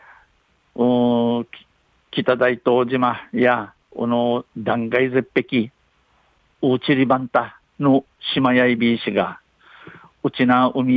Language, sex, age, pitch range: Japanese, male, 50-69, 120-145 Hz